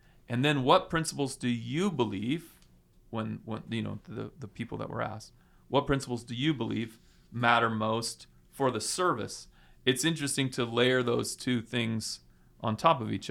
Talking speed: 170 wpm